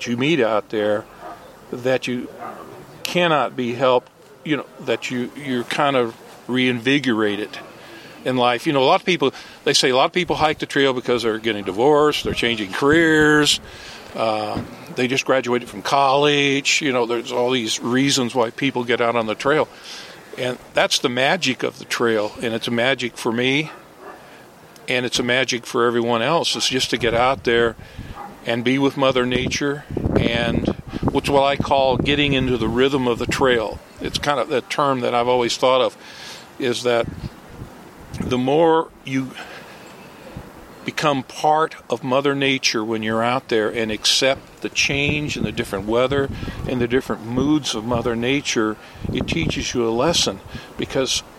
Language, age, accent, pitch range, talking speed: English, 50-69, American, 115-140 Hz, 175 wpm